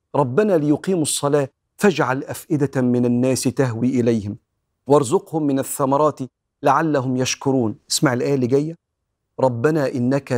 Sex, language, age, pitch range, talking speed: male, Arabic, 40-59, 120-160 Hz, 115 wpm